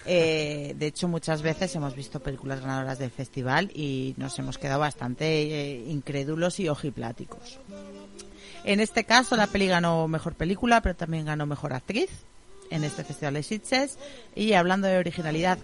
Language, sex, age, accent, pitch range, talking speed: Spanish, female, 40-59, Spanish, 150-210 Hz, 160 wpm